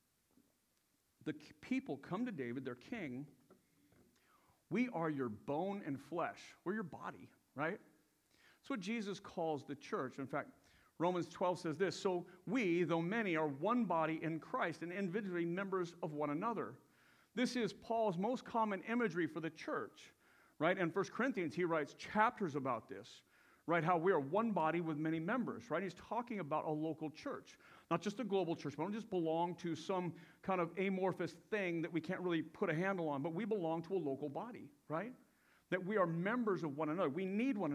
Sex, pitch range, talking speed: male, 155-205 Hz, 190 wpm